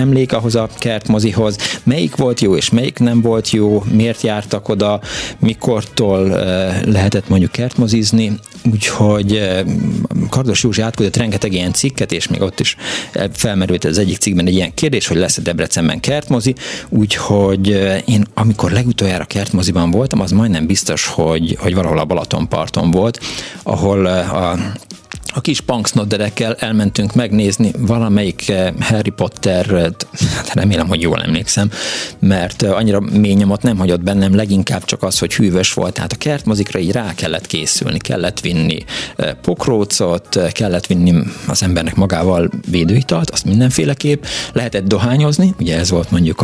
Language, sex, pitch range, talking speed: Hungarian, male, 95-120 Hz, 140 wpm